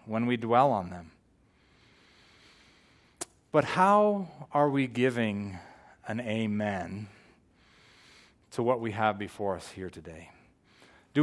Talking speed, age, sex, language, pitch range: 110 wpm, 30-49, male, English, 100-135 Hz